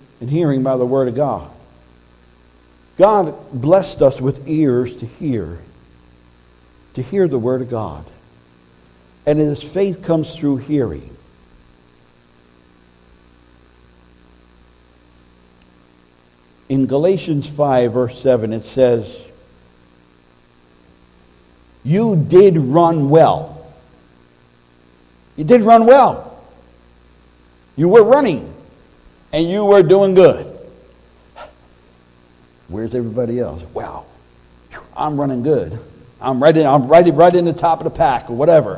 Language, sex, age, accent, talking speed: English, male, 60-79, American, 105 wpm